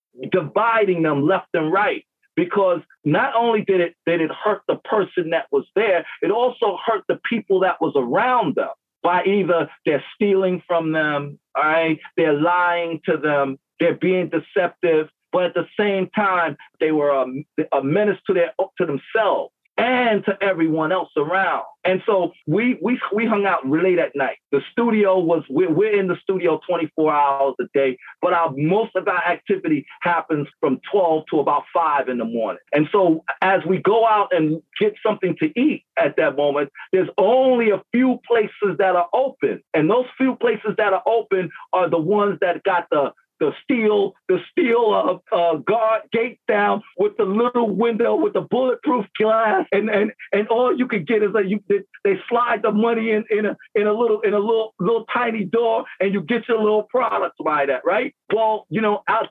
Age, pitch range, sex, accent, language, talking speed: 40-59, 170-225 Hz, male, American, English, 190 wpm